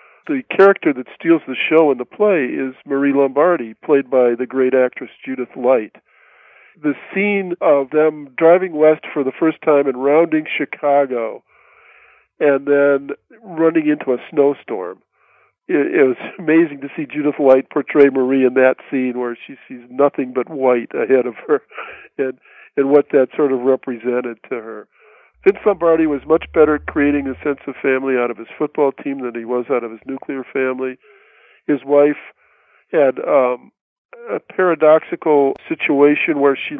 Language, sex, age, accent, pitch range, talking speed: English, male, 50-69, American, 130-160 Hz, 165 wpm